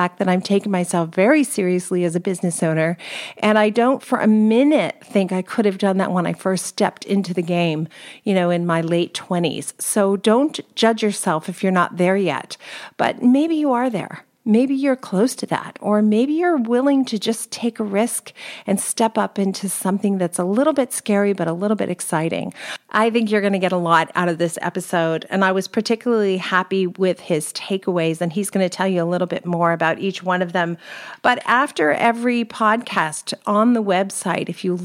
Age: 40-59